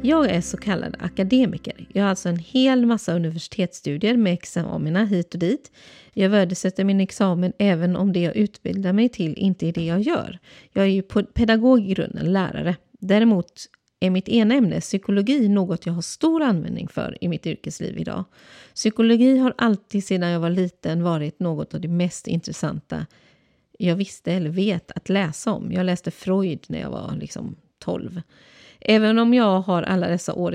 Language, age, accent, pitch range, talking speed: English, 30-49, Swedish, 175-215 Hz, 180 wpm